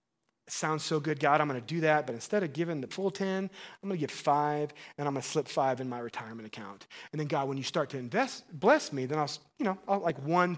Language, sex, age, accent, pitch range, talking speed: English, male, 30-49, American, 145-195 Hz, 280 wpm